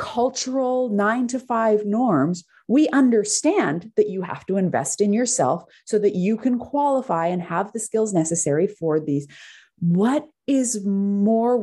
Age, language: 30-49, English